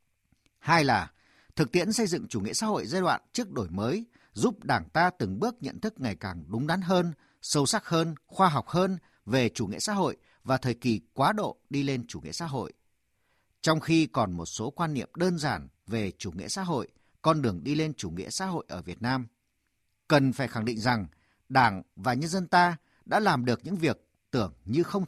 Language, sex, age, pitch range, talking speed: Vietnamese, male, 50-69, 110-180 Hz, 220 wpm